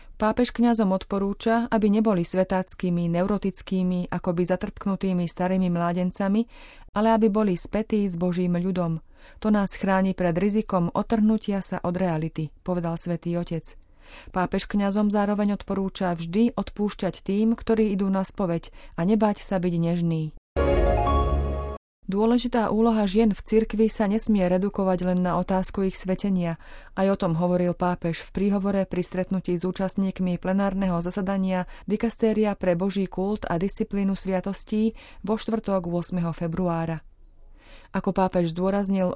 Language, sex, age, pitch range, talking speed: Slovak, female, 30-49, 180-205 Hz, 130 wpm